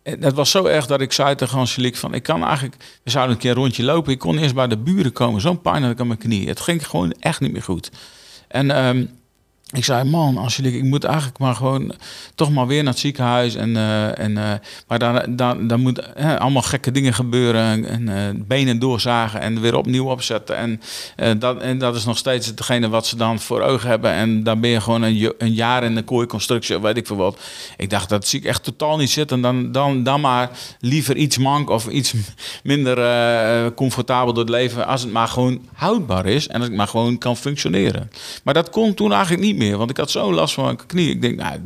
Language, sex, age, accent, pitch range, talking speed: Dutch, male, 50-69, Dutch, 115-145 Hz, 240 wpm